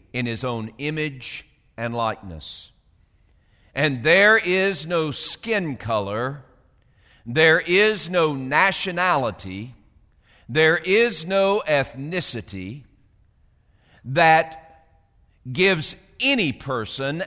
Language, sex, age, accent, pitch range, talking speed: English, male, 50-69, American, 115-185 Hz, 85 wpm